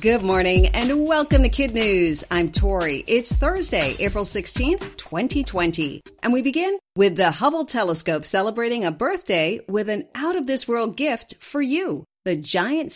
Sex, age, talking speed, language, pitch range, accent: female, 40-59, 150 wpm, English, 170-255 Hz, American